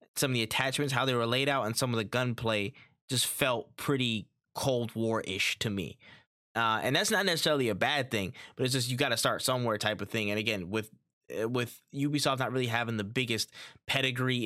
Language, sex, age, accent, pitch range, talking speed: English, male, 10-29, American, 110-135 Hz, 215 wpm